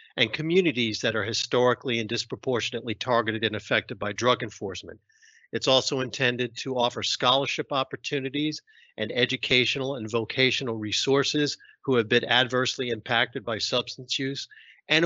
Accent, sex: American, male